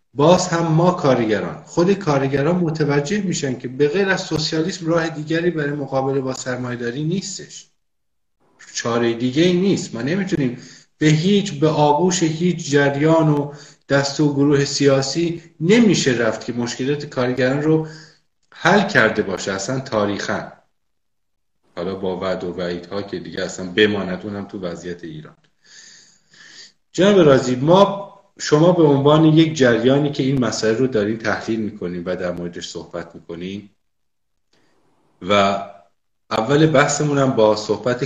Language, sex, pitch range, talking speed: Persian, male, 100-155 Hz, 130 wpm